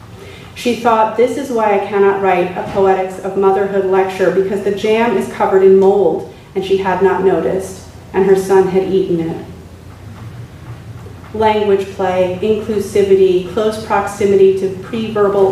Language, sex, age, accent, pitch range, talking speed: English, female, 40-59, American, 190-205 Hz, 145 wpm